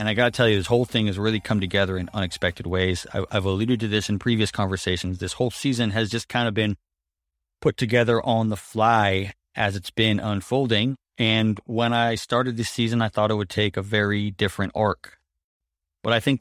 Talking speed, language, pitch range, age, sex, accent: 210 wpm, English, 95-115 Hz, 30-49, male, American